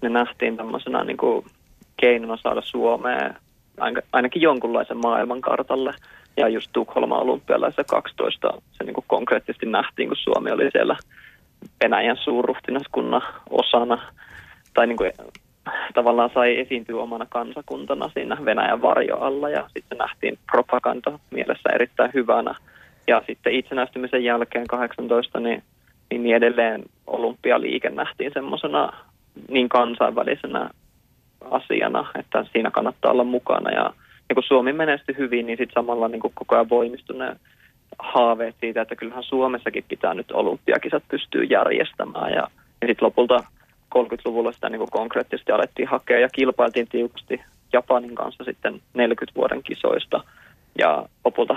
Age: 20-39